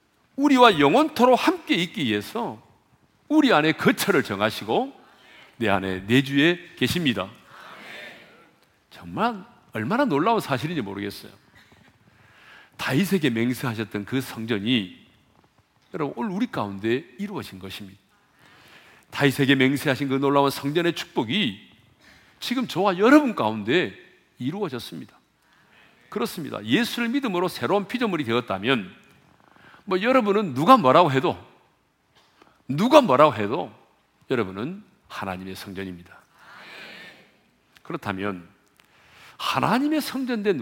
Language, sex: Korean, male